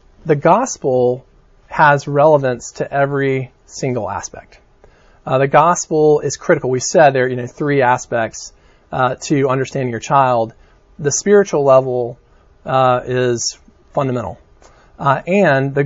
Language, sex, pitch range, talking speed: English, male, 125-160 Hz, 130 wpm